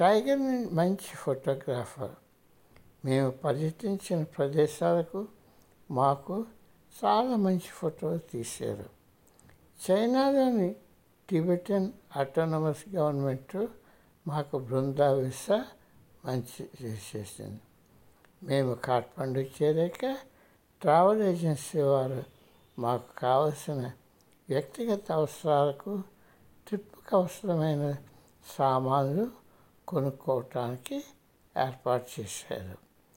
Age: 60-79